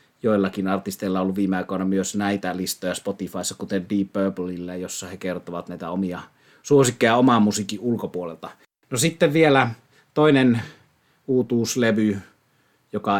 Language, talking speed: Finnish, 125 wpm